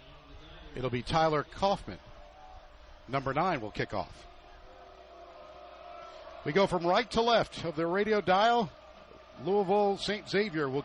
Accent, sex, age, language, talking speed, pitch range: American, male, 50-69, English, 125 wpm, 155-200 Hz